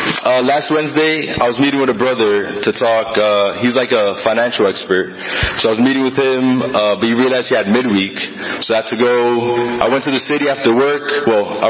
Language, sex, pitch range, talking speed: English, male, 120-140 Hz, 225 wpm